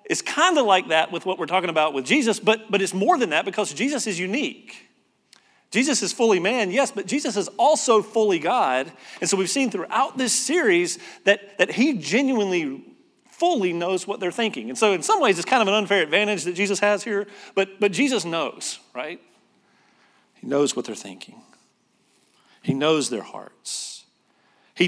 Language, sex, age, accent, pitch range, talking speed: English, male, 40-59, American, 160-230 Hz, 190 wpm